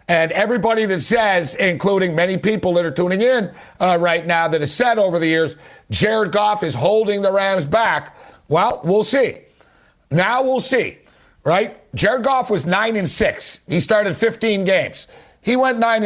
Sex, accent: male, American